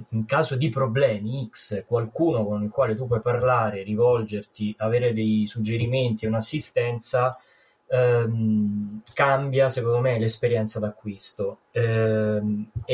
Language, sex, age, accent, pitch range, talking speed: Italian, male, 20-39, native, 105-125 Hz, 115 wpm